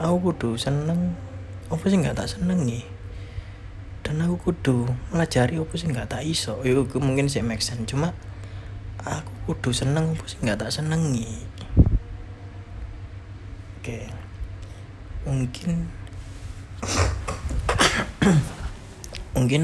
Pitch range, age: 95-125 Hz, 20-39